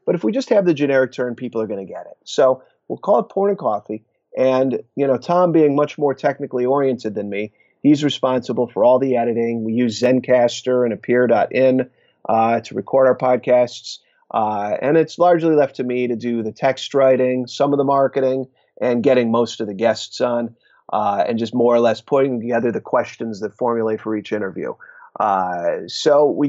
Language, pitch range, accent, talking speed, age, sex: English, 120-145 Hz, American, 195 wpm, 30-49, male